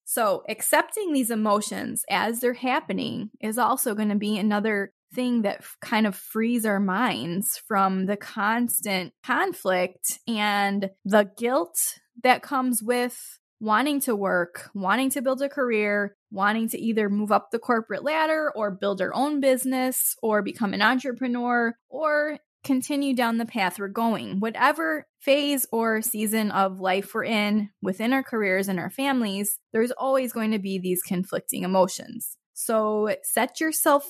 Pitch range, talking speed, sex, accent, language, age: 205-255 Hz, 155 wpm, female, American, English, 10-29